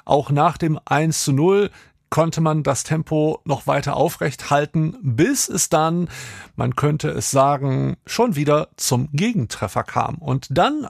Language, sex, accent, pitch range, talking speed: German, male, German, 135-180 Hz, 155 wpm